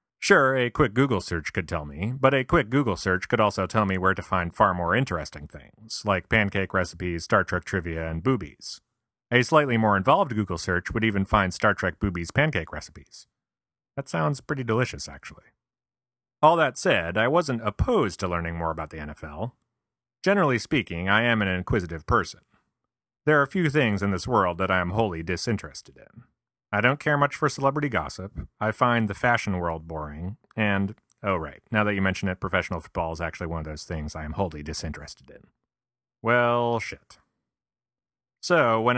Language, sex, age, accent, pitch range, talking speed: English, male, 30-49, American, 90-120 Hz, 190 wpm